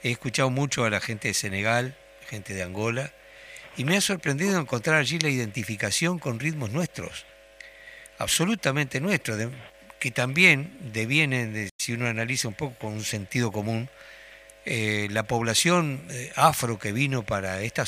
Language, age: Spanish, 60-79